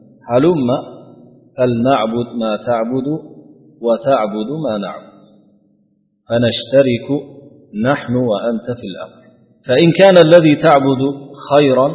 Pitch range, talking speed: 105-130 Hz, 85 wpm